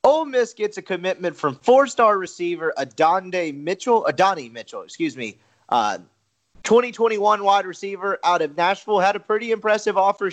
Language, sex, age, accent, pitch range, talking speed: English, male, 30-49, American, 135-190 Hz, 150 wpm